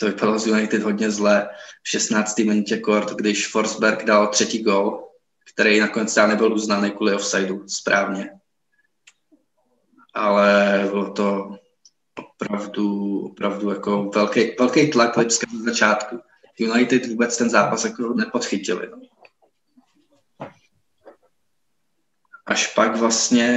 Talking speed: 105 wpm